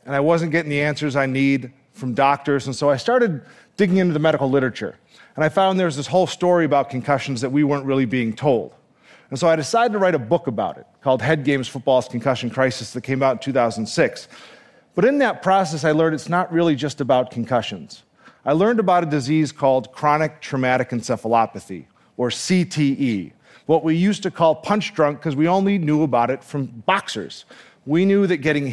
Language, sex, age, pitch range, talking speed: English, male, 40-59, 130-165 Hz, 205 wpm